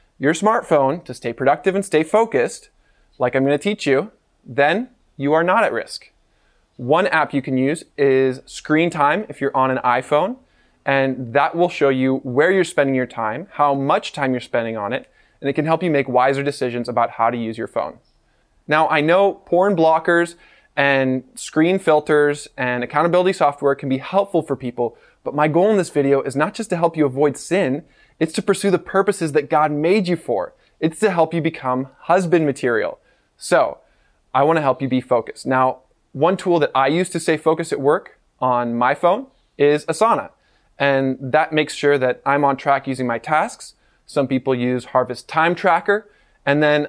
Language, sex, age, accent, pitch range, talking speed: English, male, 20-39, American, 130-170 Hz, 195 wpm